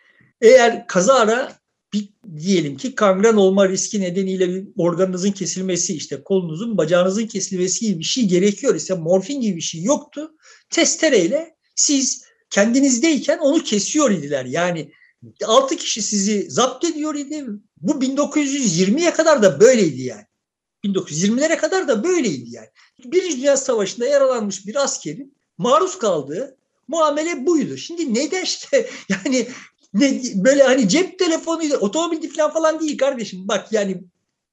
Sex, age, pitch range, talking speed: male, 60-79, 200-290 Hz, 125 wpm